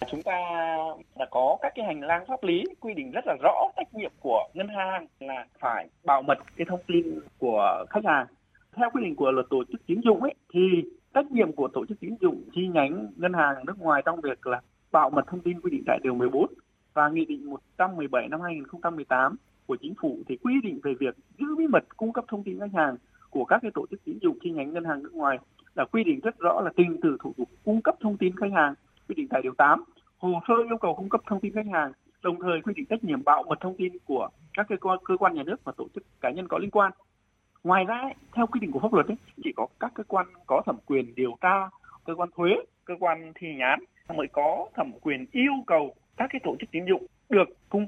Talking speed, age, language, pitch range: 250 wpm, 20-39, Vietnamese, 165-260 Hz